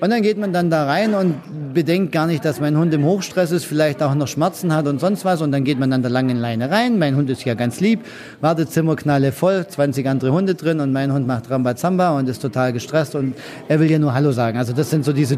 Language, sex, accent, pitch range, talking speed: German, male, German, 145-170 Hz, 270 wpm